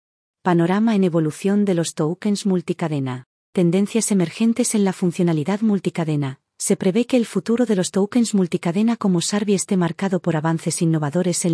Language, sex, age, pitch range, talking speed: Spanish, female, 40-59, 165-200 Hz, 155 wpm